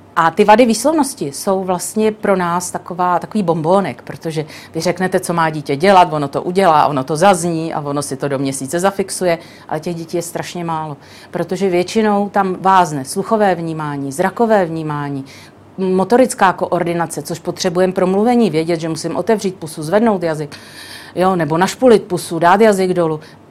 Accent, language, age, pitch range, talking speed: native, Czech, 40-59, 165-230 Hz, 165 wpm